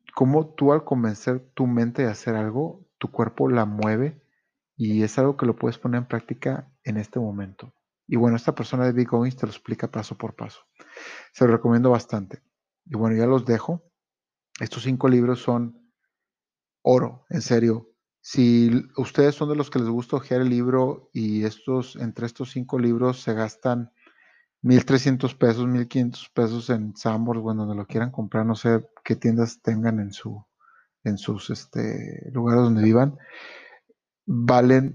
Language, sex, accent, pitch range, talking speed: Spanish, male, Mexican, 115-135 Hz, 165 wpm